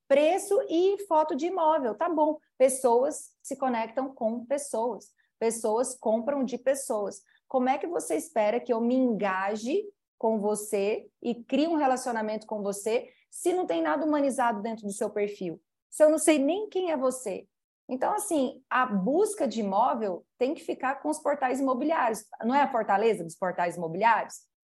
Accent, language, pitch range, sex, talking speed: Brazilian, Portuguese, 215-275 Hz, female, 170 wpm